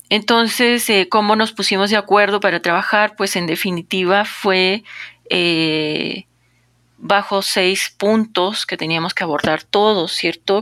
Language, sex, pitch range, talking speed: Spanish, female, 155-195 Hz, 130 wpm